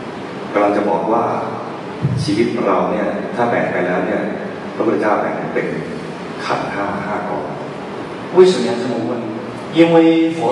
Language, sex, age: Chinese, male, 30-49